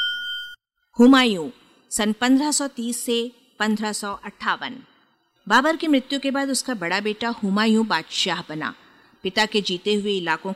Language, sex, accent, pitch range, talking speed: Hindi, female, native, 185-240 Hz, 120 wpm